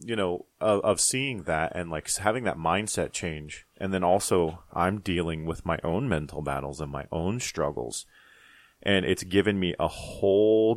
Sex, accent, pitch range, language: male, American, 80-95 Hz, English